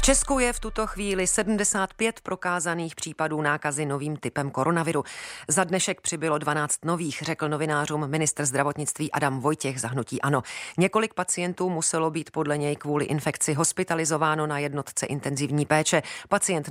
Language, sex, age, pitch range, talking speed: Czech, female, 40-59, 145-180 Hz, 140 wpm